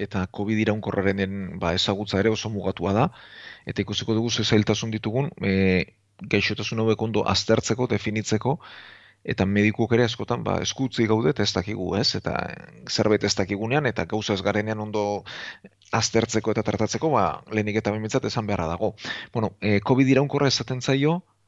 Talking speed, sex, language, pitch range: 140 wpm, male, Spanish, 105-120 Hz